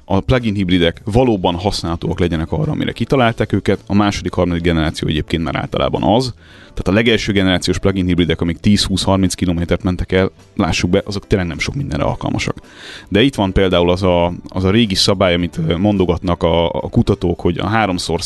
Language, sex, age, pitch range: Hungarian, male, 30-49, 90-105 Hz